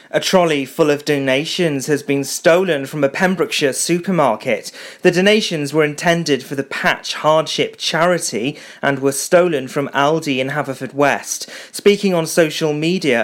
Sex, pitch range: male, 135-165 Hz